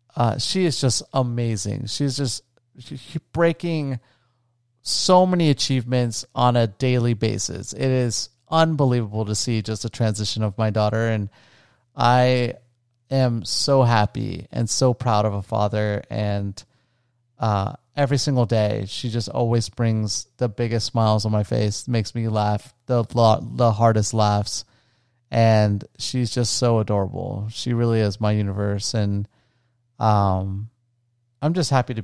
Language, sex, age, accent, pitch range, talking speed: English, male, 30-49, American, 110-125 Hz, 145 wpm